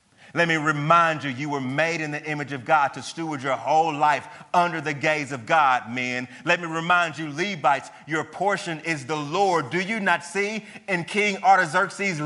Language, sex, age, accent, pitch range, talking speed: English, male, 30-49, American, 130-205 Hz, 195 wpm